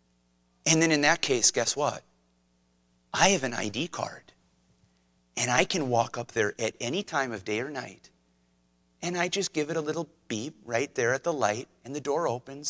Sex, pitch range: male, 120-185 Hz